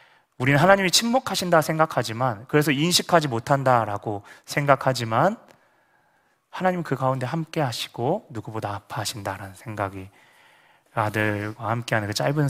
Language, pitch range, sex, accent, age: Korean, 110-145 Hz, male, native, 30-49